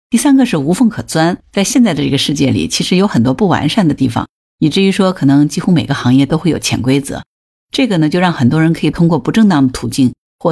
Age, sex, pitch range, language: 50-69, female, 135-185 Hz, Chinese